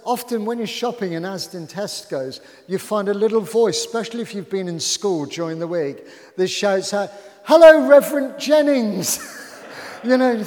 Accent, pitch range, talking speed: British, 150-210 Hz, 170 wpm